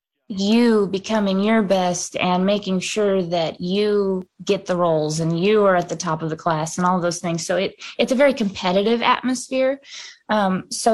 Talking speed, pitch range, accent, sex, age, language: 185 wpm, 185-210 Hz, American, female, 20-39, English